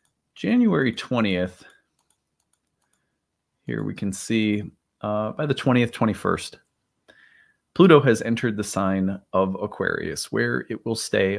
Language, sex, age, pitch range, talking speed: English, male, 30-49, 95-120 Hz, 115 wpm